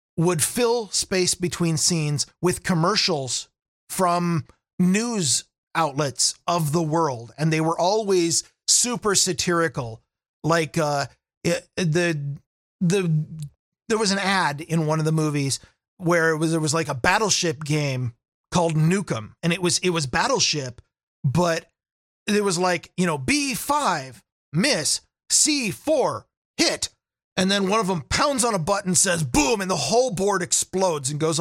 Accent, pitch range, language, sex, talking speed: American, 155-195 Hz, English, male, 145 wpm